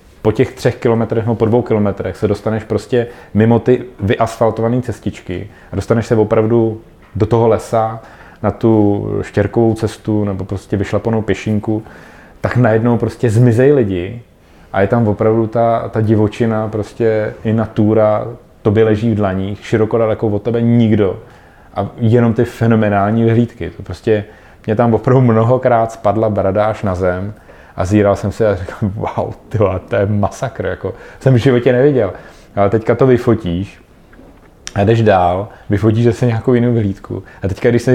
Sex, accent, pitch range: male, native, 105-120 Hz